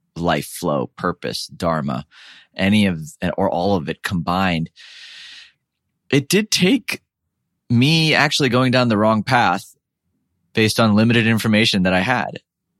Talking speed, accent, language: 130 wpm, American, English